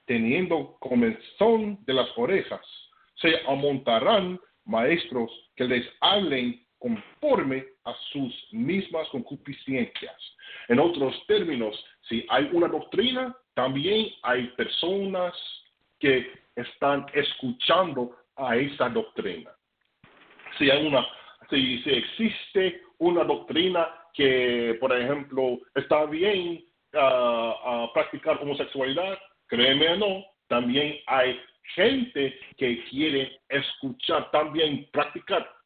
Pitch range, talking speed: 135-225 Hz, 100 wpm